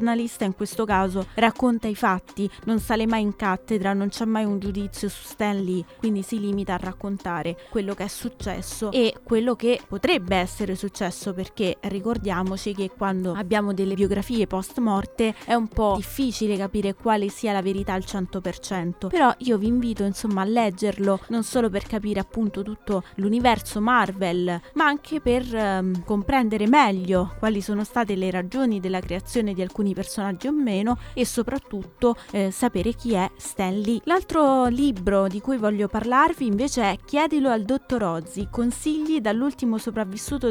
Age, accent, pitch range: 20-39, native, 195-235 Hz